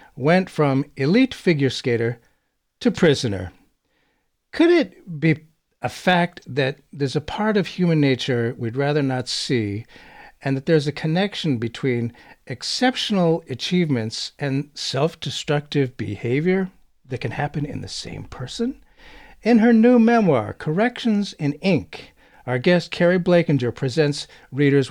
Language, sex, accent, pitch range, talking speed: English, male, American, 130-185 Hz, 130 wpm